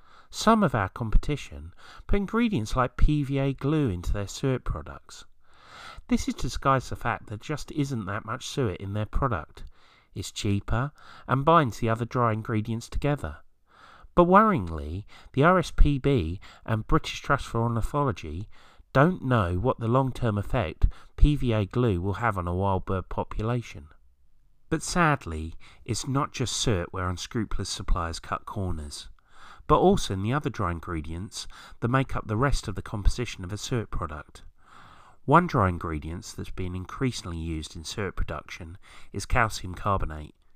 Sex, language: male, English